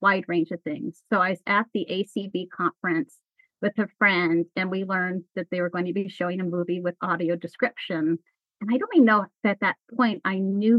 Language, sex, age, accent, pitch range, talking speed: English, female, 30-49, American, 190-275 Hz, 220 wpm